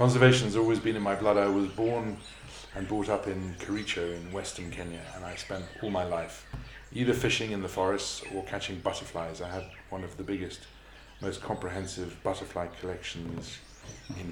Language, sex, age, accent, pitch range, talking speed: English, male, 40-59, British, 90-105 Hz, 180 wpm